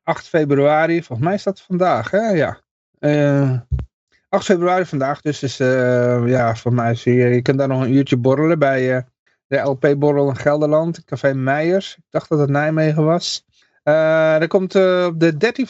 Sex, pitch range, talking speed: male, 135-180 Hz, 190 wpm